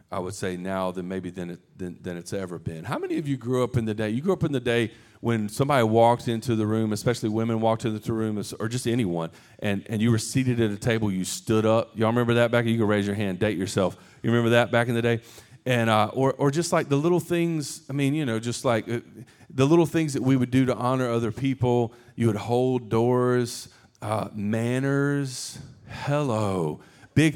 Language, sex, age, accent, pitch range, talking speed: English, male, 40-59, American, 110-135 Hz, 235 wpm